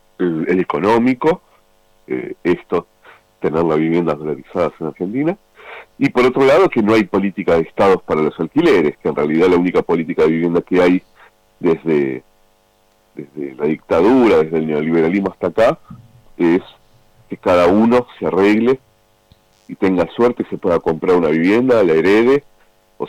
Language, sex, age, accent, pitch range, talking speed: Spanish, male, 40-59, Argentinian, 85-110 Hz, 155 wpm